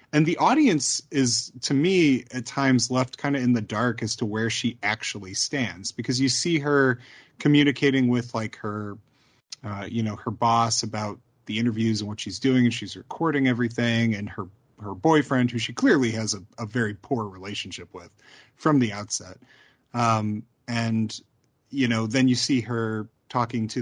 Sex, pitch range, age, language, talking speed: male, 110-130 Hz, 30-49, English, 180 wpm